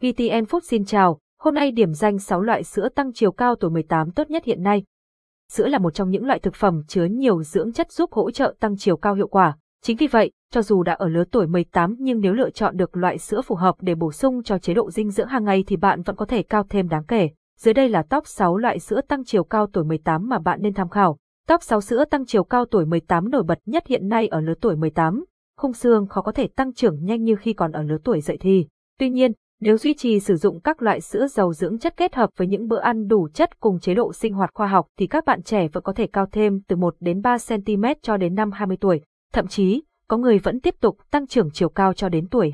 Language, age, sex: Vietnamese, 20-39, female